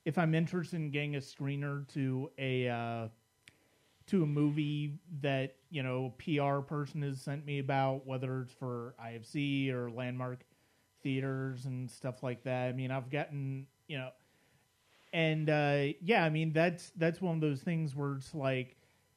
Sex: male